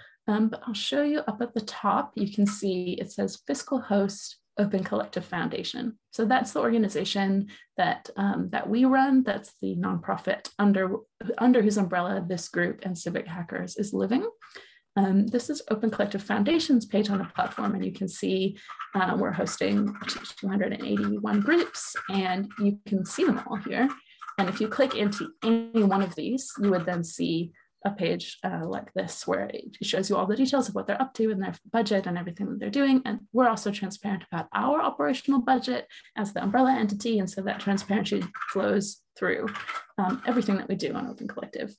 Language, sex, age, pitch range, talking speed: English, female, 20-39, 195-245 Hz, 195 wpm